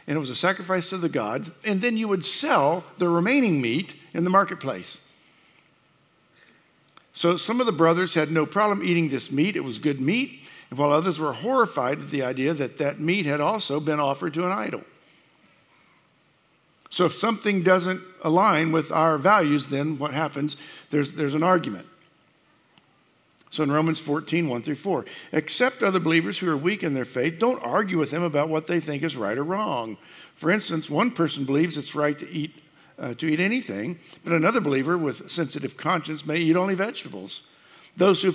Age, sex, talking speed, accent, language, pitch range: 60-79, male, 185 wpm, American, English, 150-190 Hz